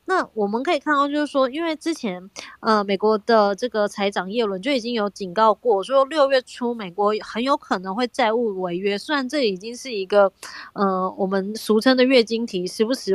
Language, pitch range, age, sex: Chinese, 200-265 Hz, 20-39, female